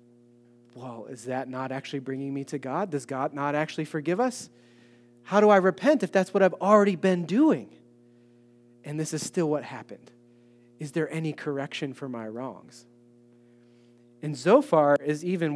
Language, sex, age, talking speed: English, male, 30-49, 165 wpm